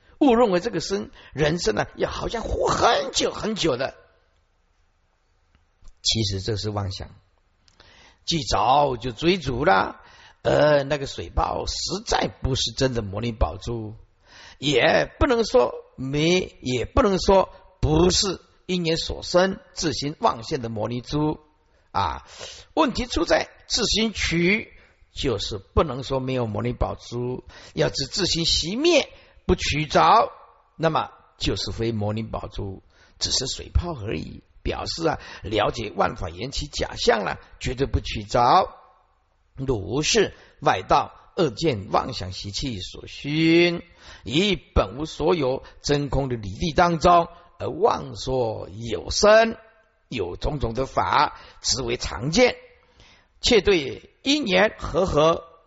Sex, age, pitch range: male, 50-69, 105-180 Hz